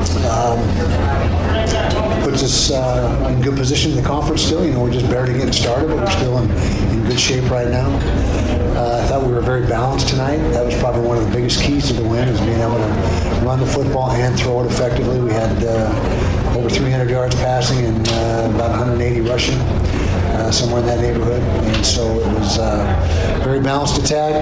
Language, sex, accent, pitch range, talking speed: English, male, American, 105-125 Hz, 200 wpm